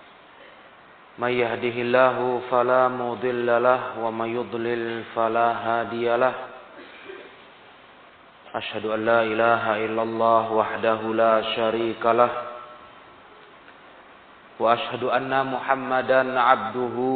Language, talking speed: Indonesian, 85 wpm